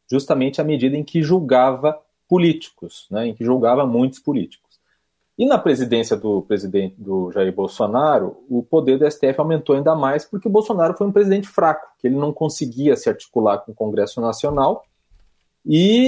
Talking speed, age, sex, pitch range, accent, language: 170 wpm, 40-59, male, 115-160 Hz, Brazilian, Portuguese